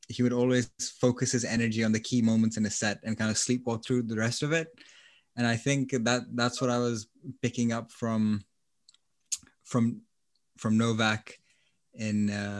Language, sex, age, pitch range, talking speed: English, male, 20-39, 110-125 Hz, 175 wpm